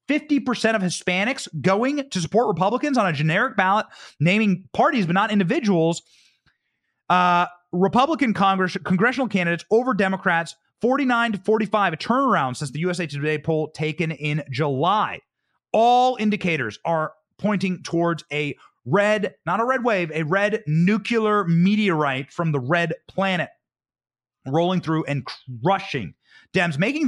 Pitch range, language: 155-220 Hz, English